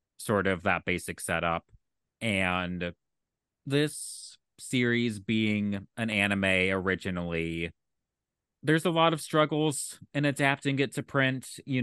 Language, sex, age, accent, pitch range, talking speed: English, male, 30-49, American, 95-115 Hz, 115 wpm